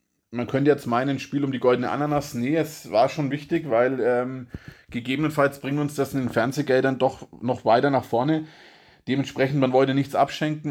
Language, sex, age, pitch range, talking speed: German, male, 20-39, 125-145 Hz, 190 wpm